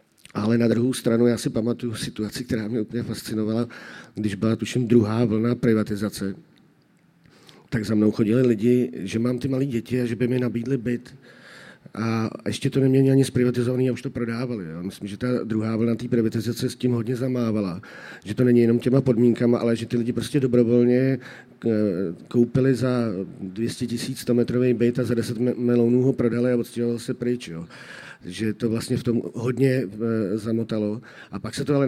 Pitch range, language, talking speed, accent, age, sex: 115-130 Hz, Czech, 185 wpm, native, 40-59, male